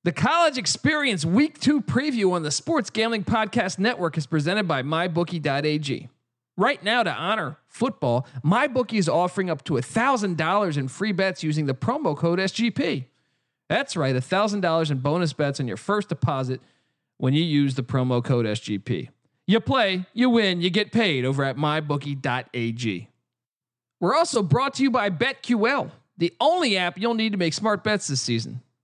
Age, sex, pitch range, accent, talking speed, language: 40-59, male, 140-215 Hz, American, 165 wpm, English